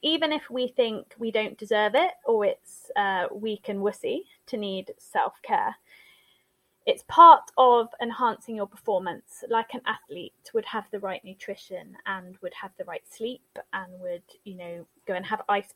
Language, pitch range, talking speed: English, 190-235 Hz, 170 wpm